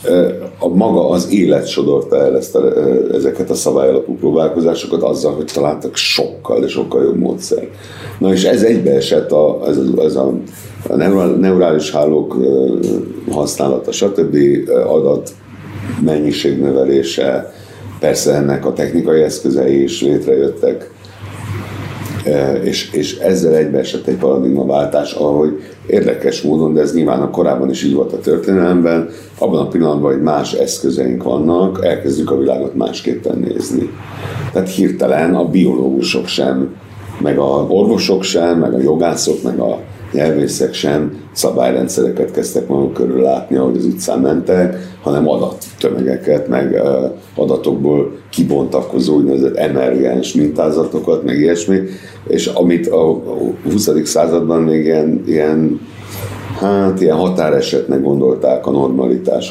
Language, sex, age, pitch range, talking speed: Hungarian, male, 60-79, 70-100 Hz, 125 wpm